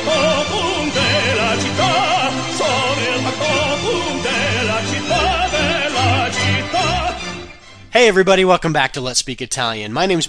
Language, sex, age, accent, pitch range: Italian, male, 40-59, American, 115-180 Hz